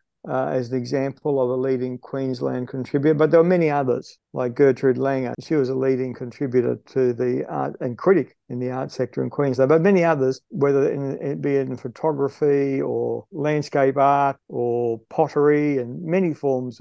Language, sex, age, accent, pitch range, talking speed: English, male, 50-69, Australian, 130-150 Hz, 175 wpm